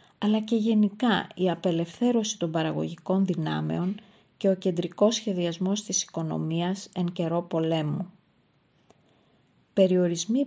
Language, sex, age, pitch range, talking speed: Greek, female, 30-49, 165-200 Hz, 105 wpm